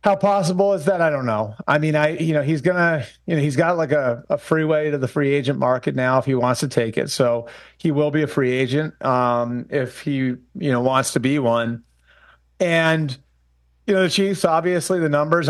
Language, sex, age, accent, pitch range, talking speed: English, male, 30-49, American, 135-165 Hz, 225 wpm